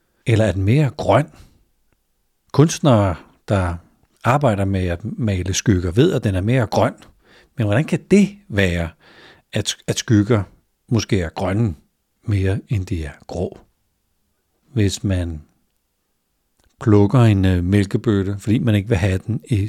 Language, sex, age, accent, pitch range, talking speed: Danish, male, 60-79, native, 95-115 Hz, 135 wpm